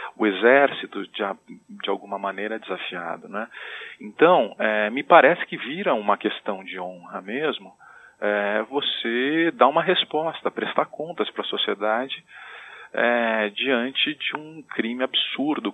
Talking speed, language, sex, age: 140 wpm, Portuguese, male, 40-59